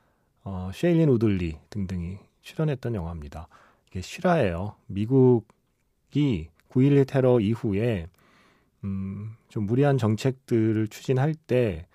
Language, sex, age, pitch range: Korean, male, 40-59, 95-135 Hz